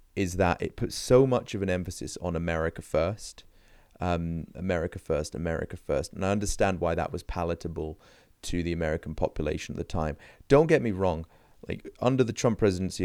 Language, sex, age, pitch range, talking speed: English, male, 30-49, 85-105 Hz, 185 wpm